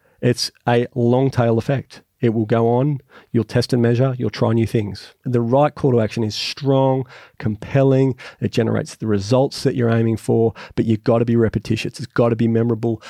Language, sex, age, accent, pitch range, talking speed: English, male, 30-49, Australian, 115-145 Hz, 200 wpm